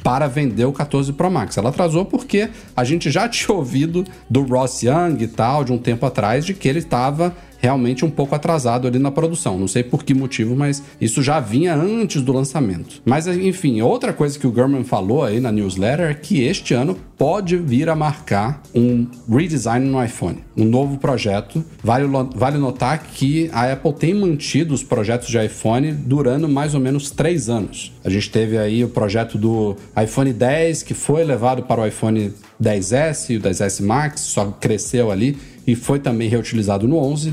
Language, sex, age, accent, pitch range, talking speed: Portuguese, male, 40-59, Brazilian, 115-150 Hz, 190 wpm